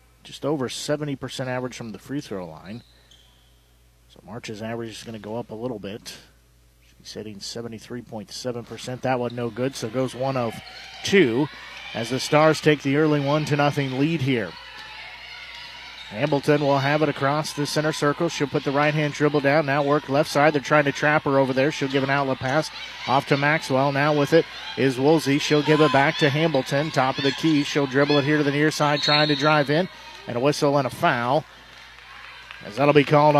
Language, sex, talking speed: English, male, 200 wpm